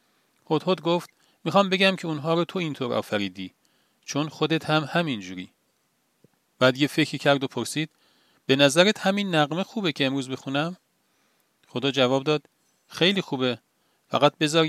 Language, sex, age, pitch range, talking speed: Persian, male, 40-59, 120-160 Hz, 145 wpm